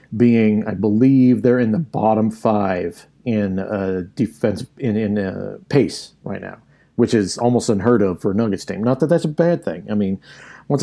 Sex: male